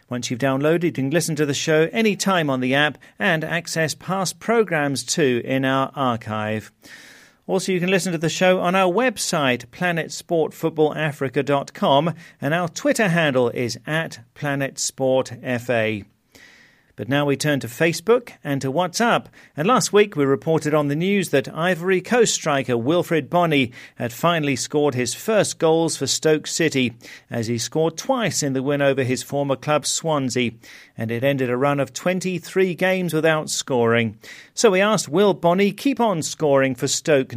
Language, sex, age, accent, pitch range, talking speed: English, male, 40-59, British, 130-175 Hz, 165 wpm